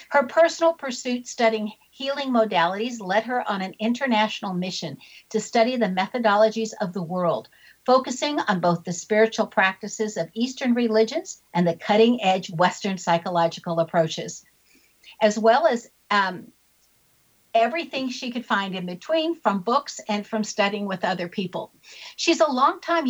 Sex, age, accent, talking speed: female, 60-79, American, 145 wpm